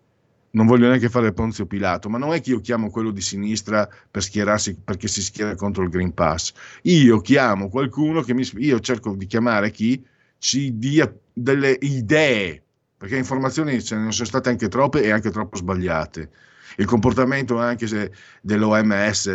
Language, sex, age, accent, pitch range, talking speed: Italian, male, 50-69, native, 95-120 Hz, 175 wpm